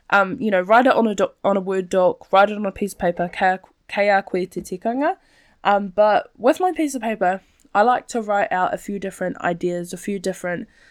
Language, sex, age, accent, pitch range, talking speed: English, female, 10-29, Australian, 180-210 Hz, 210 wpm